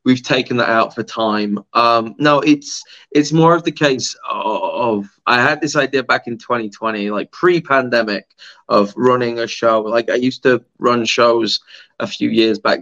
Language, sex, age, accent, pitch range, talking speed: English, male, 20-39, British, 110-140 Hz, 185 wpm